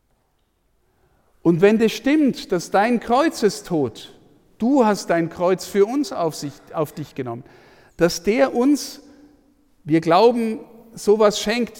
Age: 50-69